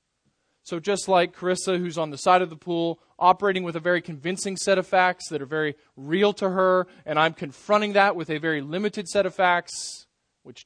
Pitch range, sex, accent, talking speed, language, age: 150-190 Hz, male, American, 210 wpm, English, 20-39